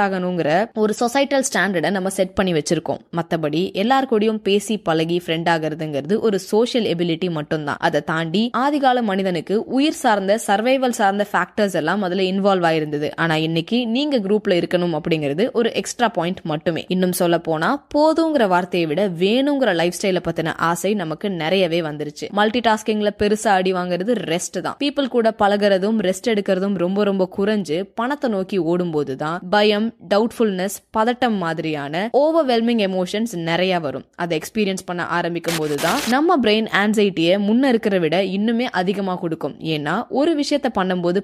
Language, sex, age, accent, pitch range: Tamil, female, 20-39, native, 170-220 Hz